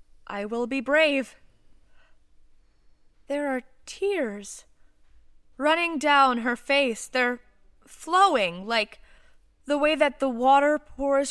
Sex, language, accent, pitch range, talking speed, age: female, English, American, 205-275 Hz, 105 wpm, 20-39